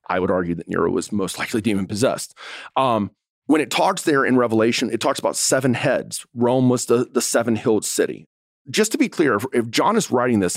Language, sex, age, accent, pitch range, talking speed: English, male, 40-59, American, 105-140 Hz, 215 wpm